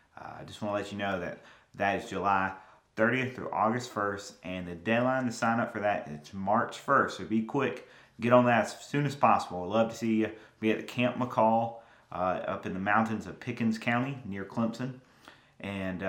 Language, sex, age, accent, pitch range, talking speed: English, male, 30-49, American, 100-115 Hz, 220 wpm